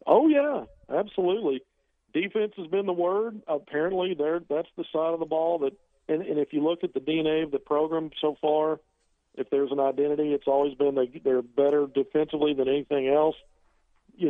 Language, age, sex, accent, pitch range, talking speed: English, 50-69, male, American, 135-160 Hz, 185 wpm